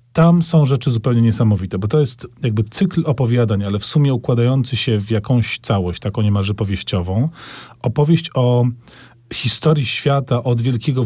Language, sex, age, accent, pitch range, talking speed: Polish, male, 40-59, native, 115-135 Hz, 150 wpm